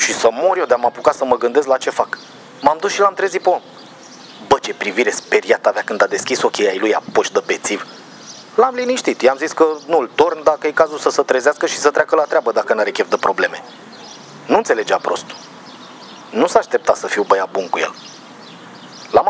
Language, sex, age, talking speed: Romanian, male, 30-49, 220 wpm